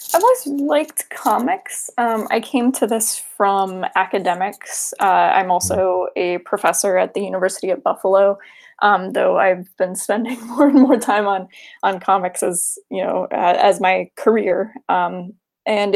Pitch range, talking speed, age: 190-235 Hz, 160 wpm, 20-39